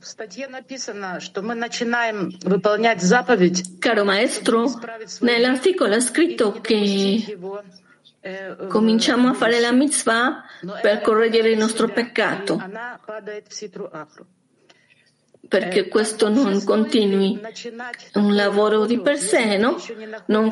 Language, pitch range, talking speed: Italian, 200-240 Hz, 80 wpm